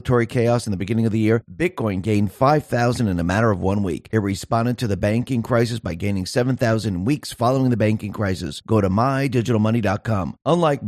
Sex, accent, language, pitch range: male, American, English, 100-130 Hz